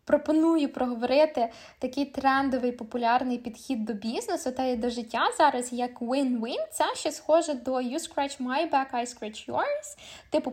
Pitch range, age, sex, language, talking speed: 240-295 Hz, 10-29, female, Ukrainian, 155 wpm